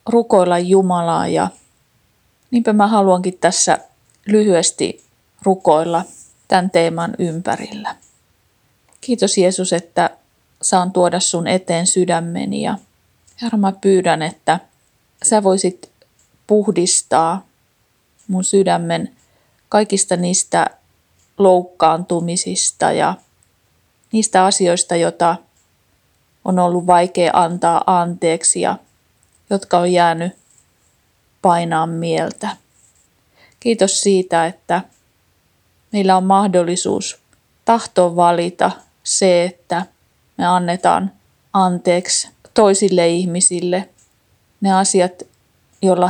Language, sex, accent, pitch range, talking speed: Finnish, female, native, 170-190 Hz, 85 wpm